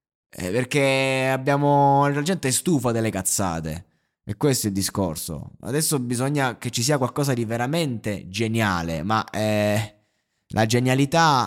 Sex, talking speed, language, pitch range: male, 135 wpm, Italian, 100-135 Hz